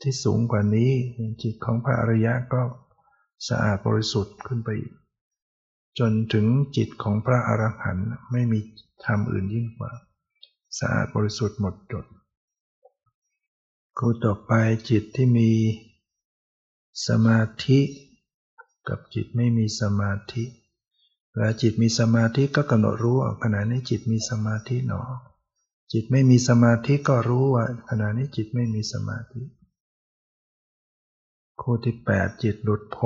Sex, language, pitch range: male, Thai, 105-120 Hz